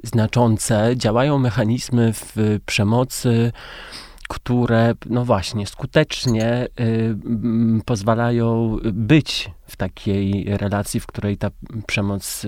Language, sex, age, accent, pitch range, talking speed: Polish, male, 30-49, native, 105-120 Hz, 85 wpm